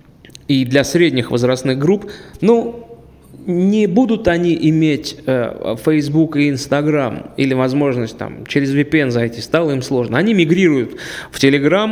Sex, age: male, 20-39